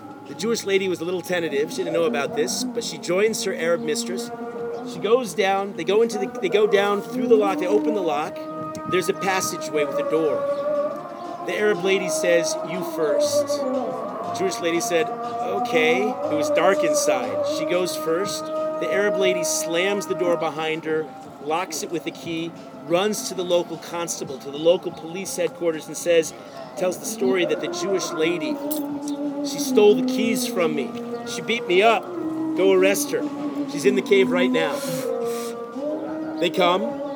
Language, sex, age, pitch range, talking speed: English, male, 40-59, 185-280 Hz, 180 wpm